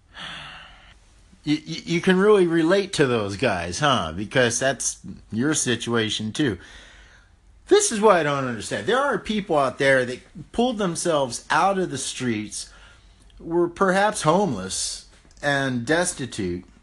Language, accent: English, American